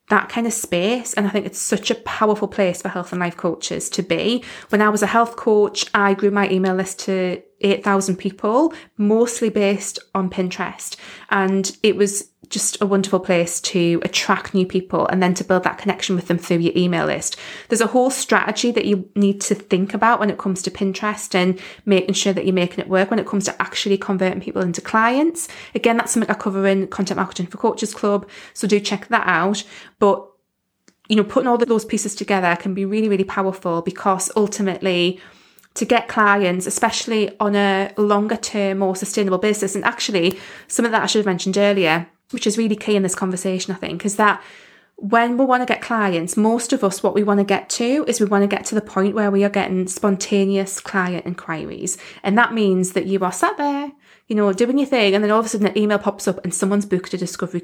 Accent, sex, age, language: British, female, 20-39, English